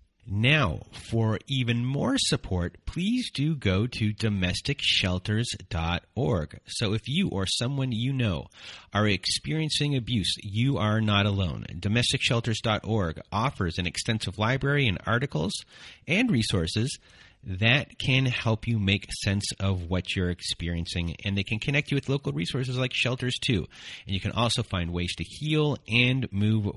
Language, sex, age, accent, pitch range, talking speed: English, male, 30-49, American, 95-130 Hz, 145 wpm